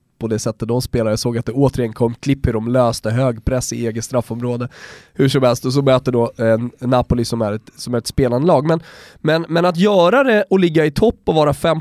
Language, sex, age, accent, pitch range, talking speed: Swedish, male, 20-39, native, 120-165 Hz, 245 wpm